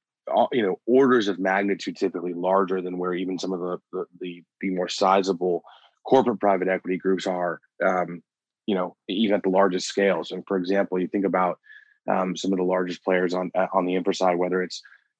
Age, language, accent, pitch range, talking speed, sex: 20-39, English, American, 90-100 Hz, 200 wpm, male